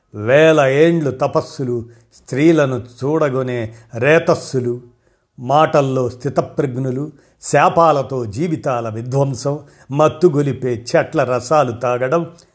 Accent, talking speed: native, 70 wpm